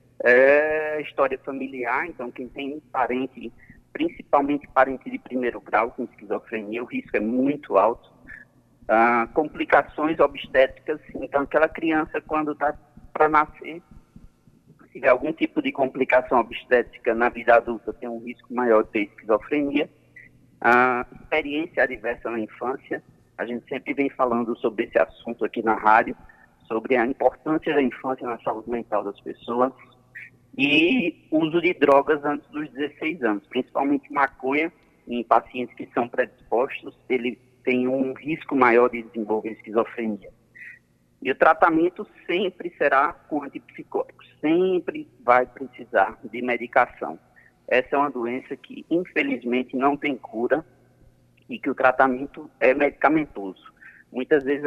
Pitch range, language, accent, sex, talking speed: 120-150 Hz, Portuguese, Brazilian, male, 135 wpm